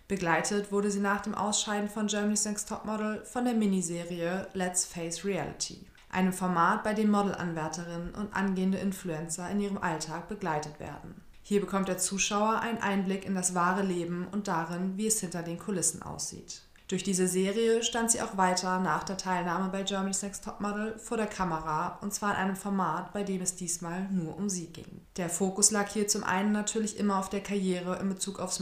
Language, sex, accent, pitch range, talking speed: German, female, German, 175-200 Hz, 195 wpm